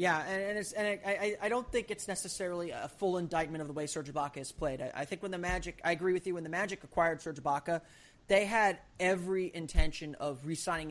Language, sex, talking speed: English, male, 230 wpm